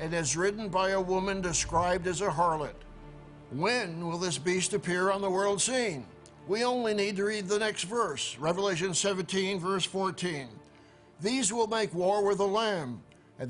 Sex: male